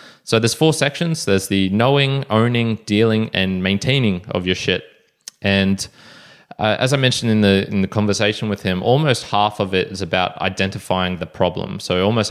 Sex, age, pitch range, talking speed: male, 20-39, 95-110 Hz, 180 wpm